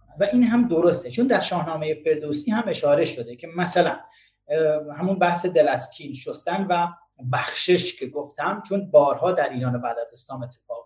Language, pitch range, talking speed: Persian, 140-195 Hz, 160 wpm